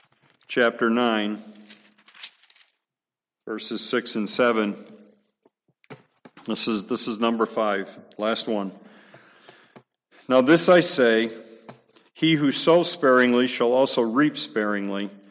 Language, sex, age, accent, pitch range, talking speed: English, male, 50-69, American, 110-145 Hz, 100 wpm